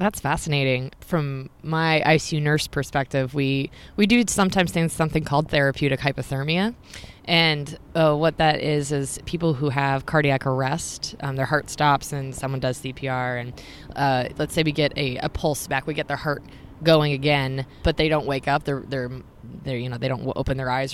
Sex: female